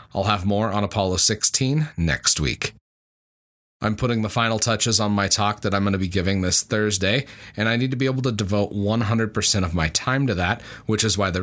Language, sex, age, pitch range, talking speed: English, male, 30-49, 95-115 Hz, 220 wpm